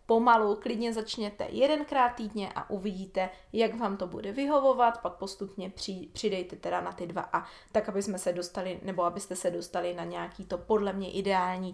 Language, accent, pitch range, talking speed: Czech, native, 200-245 Hz, 185 wpm